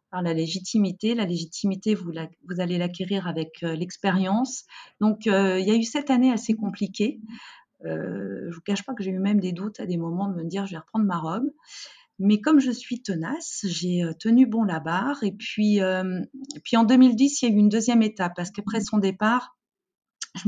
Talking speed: 220 wpm